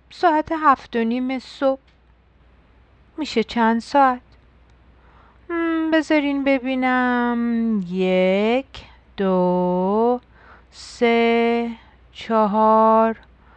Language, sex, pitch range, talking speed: Persian, female, 200-275 Hz, 60 wpm